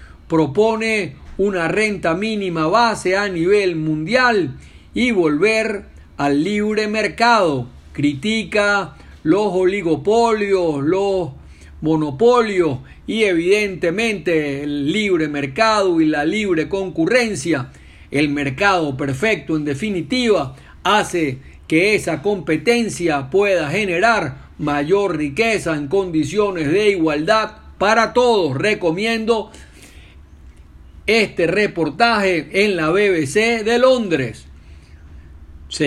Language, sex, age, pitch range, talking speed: Spanish, male, 50-69, 150-215 Hz, 90 wpm